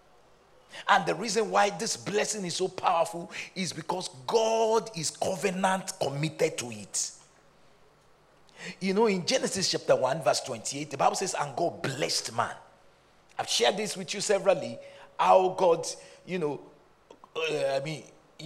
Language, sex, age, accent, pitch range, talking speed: English, male, 50-69, Nigerian, 140-200 Hz, 145 wpm